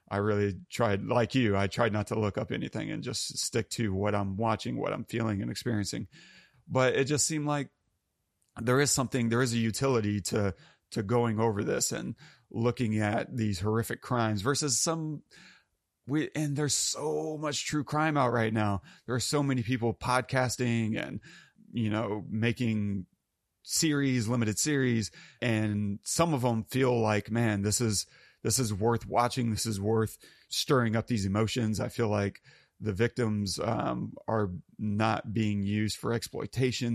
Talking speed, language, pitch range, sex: 170 wpm, English, 105-135 Hz, male